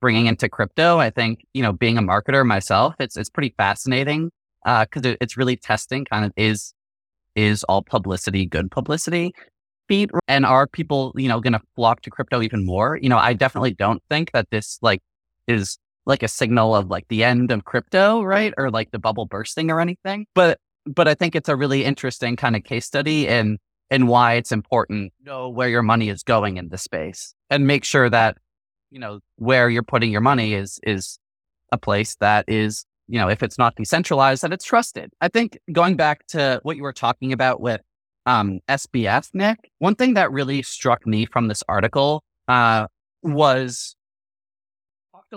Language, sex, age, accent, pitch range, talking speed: English, male, 30-49, American, 110-140 Hz, 195 wpm